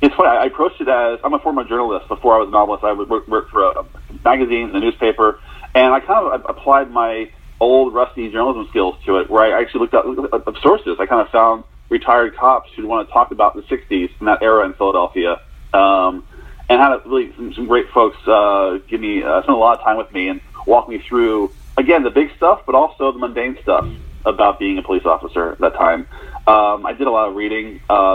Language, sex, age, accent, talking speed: English, male, 30-49, American, 230 wpm